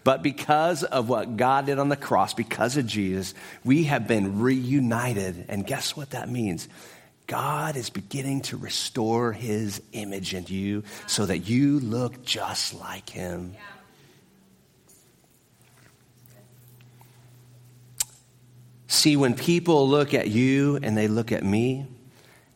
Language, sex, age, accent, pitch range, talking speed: English, male, 40-59, American, 110-150 Hz, 130 wpm